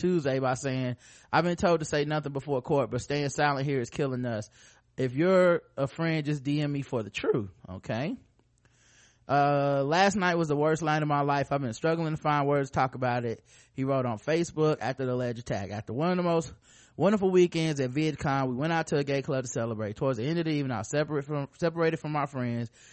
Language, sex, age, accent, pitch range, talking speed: English, male, 20-39, American, 125-150 Hz, 235 wpm